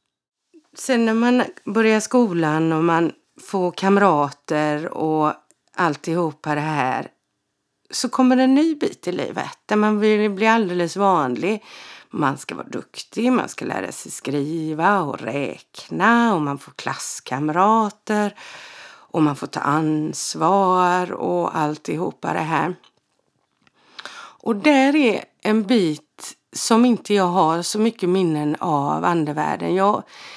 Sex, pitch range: female, 150-215 Hz